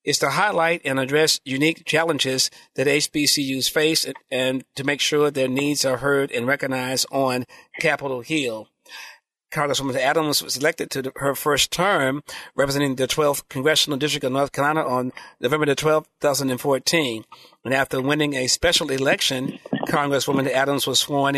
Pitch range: 130-155 Hz